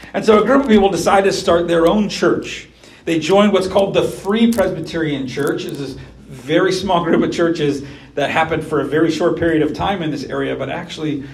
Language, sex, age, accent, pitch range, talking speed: English, male, 40-59, American, 140-190 Hz, 215 wpm